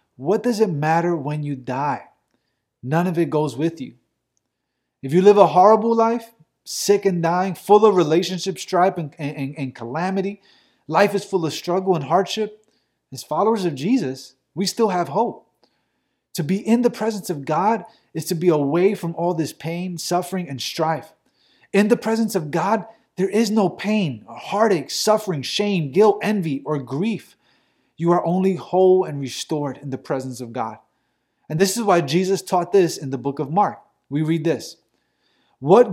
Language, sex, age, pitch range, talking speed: English, male, 30-49, 155-205 Hz, 175 wpm